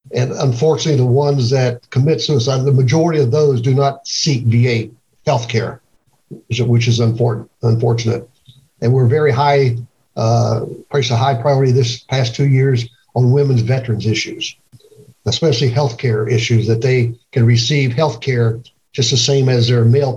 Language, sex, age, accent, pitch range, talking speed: English, male, 60-79, American, 120-140 Hz, 160 wpm